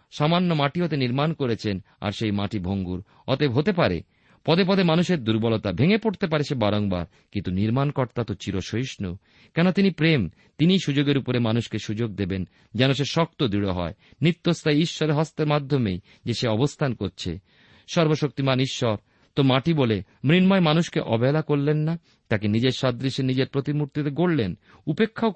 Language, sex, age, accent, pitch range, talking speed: Bengali, male, 50-69, native, 105-155 Hz, 145 wpm